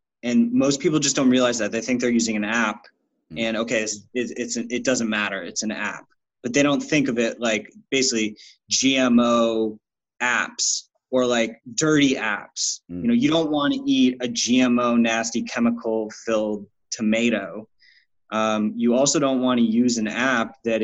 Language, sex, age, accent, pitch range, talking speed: English, male, 20-39, American, 110-125 Hz, 175 wpm